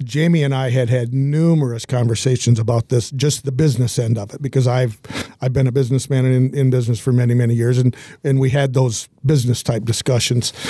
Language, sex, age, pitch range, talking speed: English, male, 50-69, 125-150 Hz, 200 wpm